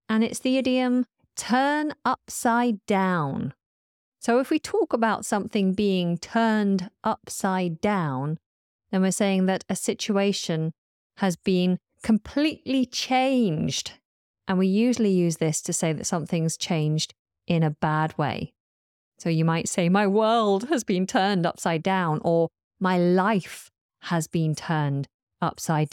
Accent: British